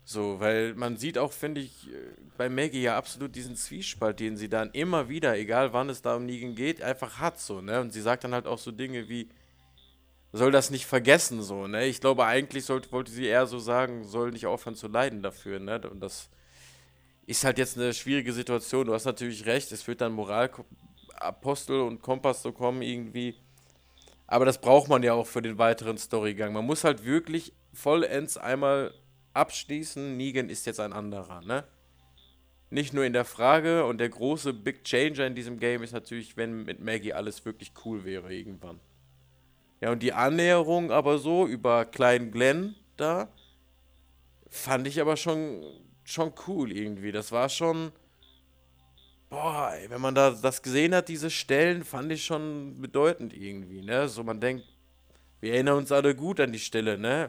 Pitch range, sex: 105-135 Hz, male